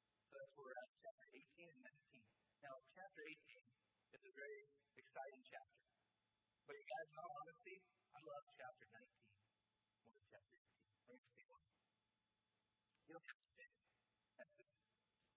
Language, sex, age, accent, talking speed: English, male, 40-59, American, 165 wpm